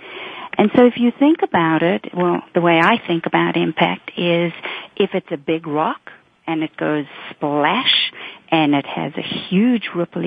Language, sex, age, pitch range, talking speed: English, female, 50-69, 175-225 Hz, 175 wpm